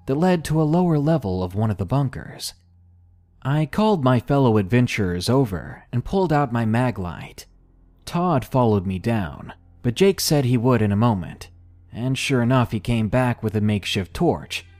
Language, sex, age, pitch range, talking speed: English, male, 30-49, 95-140 Hz, 180 wpm